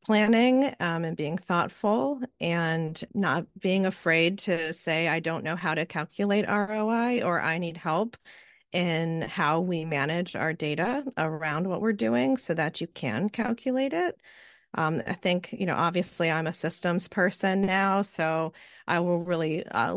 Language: English